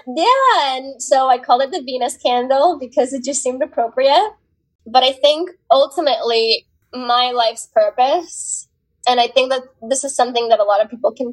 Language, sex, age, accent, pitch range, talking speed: English, female, 10-29, American, 215-285 Hz, 180 wpm